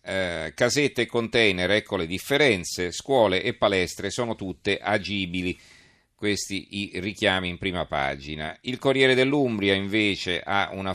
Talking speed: 135 wpm